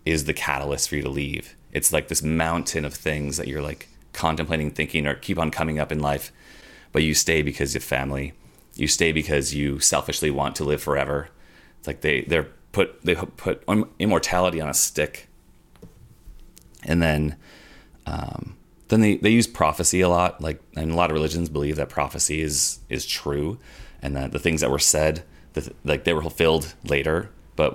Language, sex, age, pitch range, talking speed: English, male, 30-49, 70-80 Hz, 190 wpm